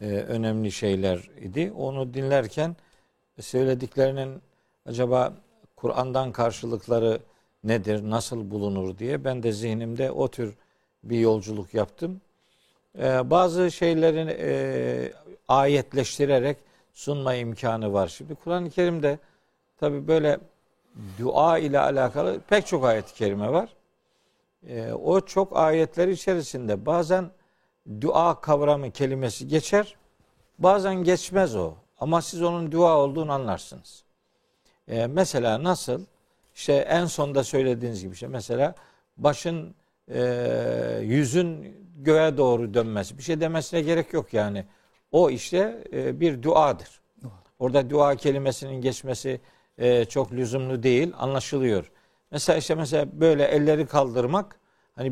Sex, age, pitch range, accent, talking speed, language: male, 50-69, 115-160 Hz, native, 110 wpm, Turkish